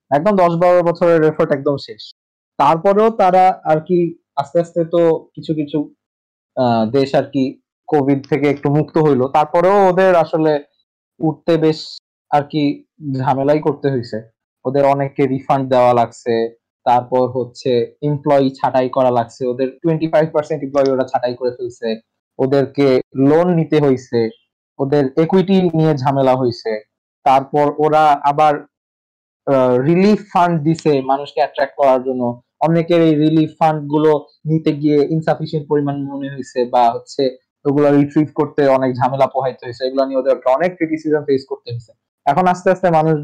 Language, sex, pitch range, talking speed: Bengali, male, 130-160 Hz, 45 wpm